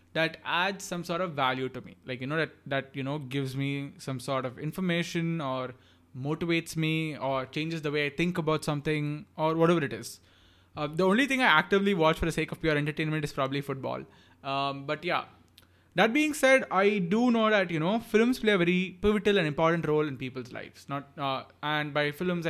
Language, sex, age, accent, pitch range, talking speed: English, male, 20-39, Indian, 135-170 Hz, 215 wpm